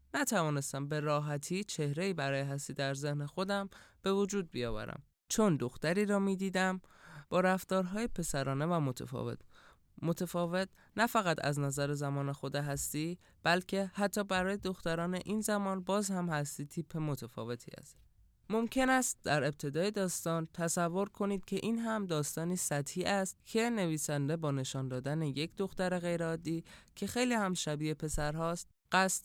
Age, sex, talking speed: 20-39, male, 140 wpm